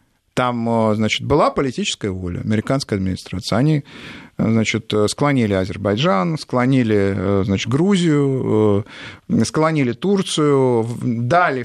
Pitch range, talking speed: 110-155 Hz, 90 wpm